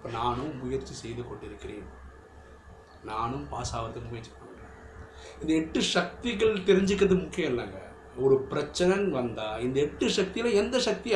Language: Tamil